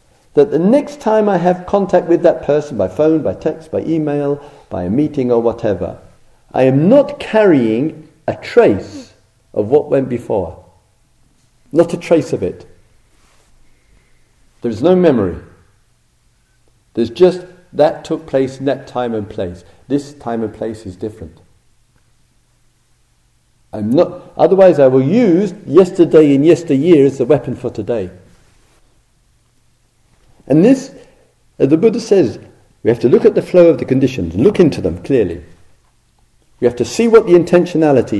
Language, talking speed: English, 150 wpm